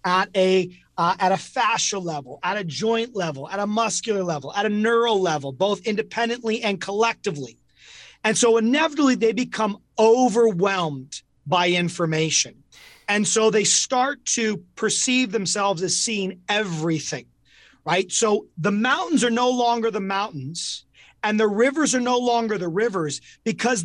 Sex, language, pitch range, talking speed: male, English, 175-230 Hz, 150 wpm